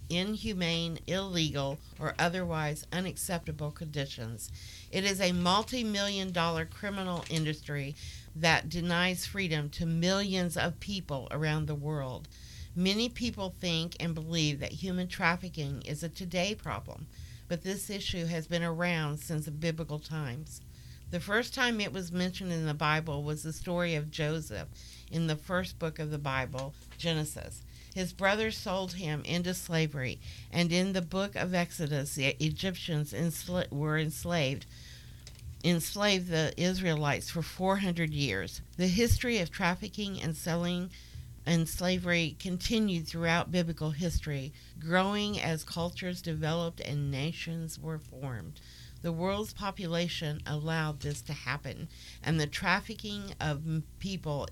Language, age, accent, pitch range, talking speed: English, 50-69, American, 150-180 Hz, 135 wpm